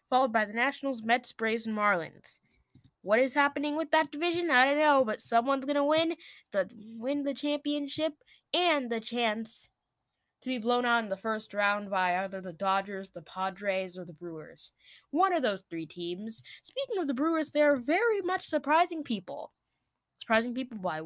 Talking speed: 180 wpm